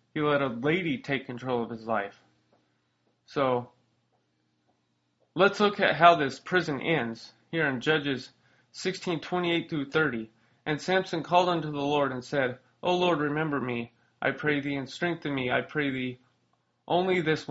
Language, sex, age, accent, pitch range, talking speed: English, male, 30-49, American, 125-160 Hz, 155 wpm